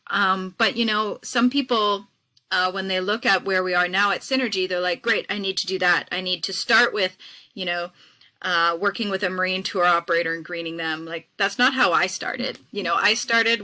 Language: English